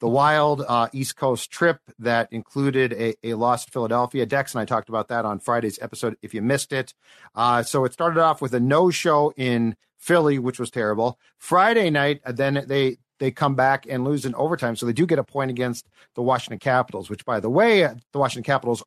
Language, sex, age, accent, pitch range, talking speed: English, male, 50-69, American, 115-140 Hz, 215 wpm